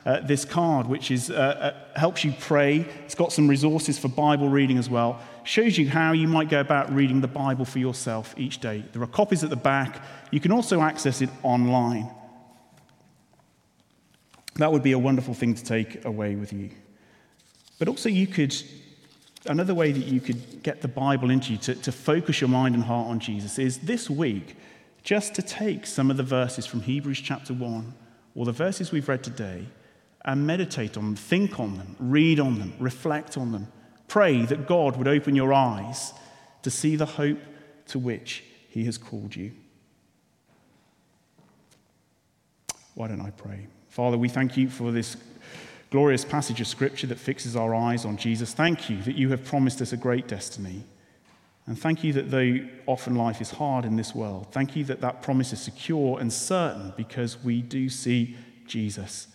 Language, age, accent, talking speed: English, 30-49, British, 185 wpm